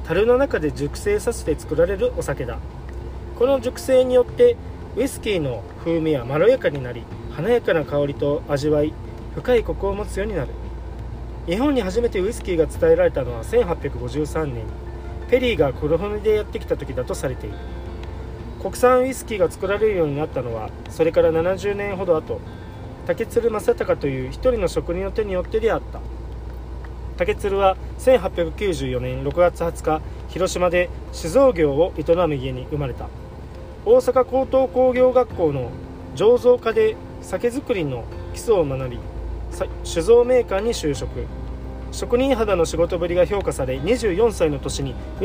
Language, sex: Japanese, male